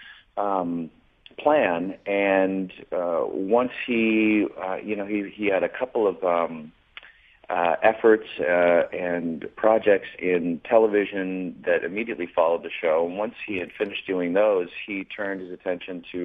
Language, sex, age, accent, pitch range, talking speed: English, male, 40-59, American, 85-115 Hz, 150 wpm